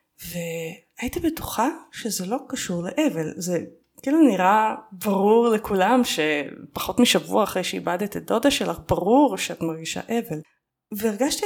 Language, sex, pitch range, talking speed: Hebrew, female, 180-260 Hz, 120 wpm